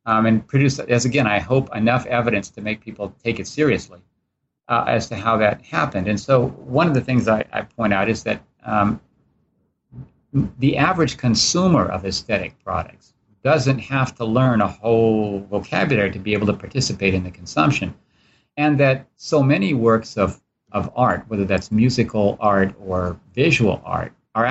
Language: English